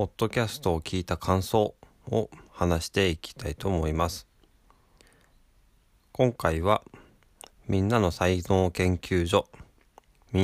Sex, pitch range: male, 85-110 Hz